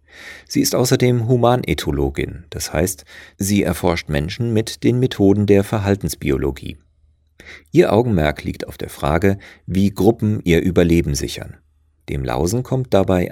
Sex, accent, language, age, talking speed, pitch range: male, German, German, 40-59, 130 wpm, 75-105 Hz